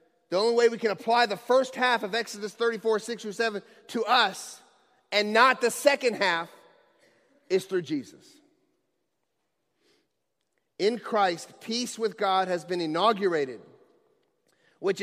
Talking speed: 135 wpm